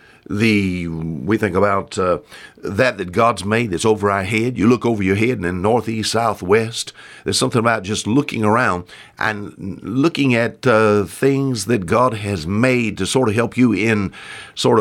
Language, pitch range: English, 105-155 Hz